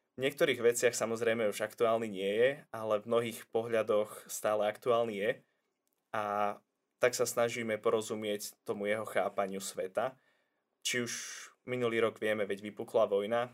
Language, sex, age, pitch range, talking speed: Slovak, male, 20-39, 105-115 Hz, 140 wpm